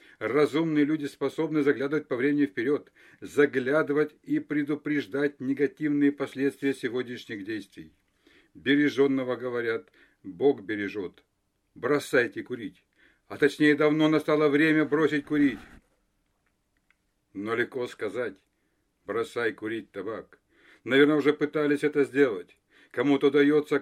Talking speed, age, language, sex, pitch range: 100 wpm, 60-79, Russian, male, 130-150 Hz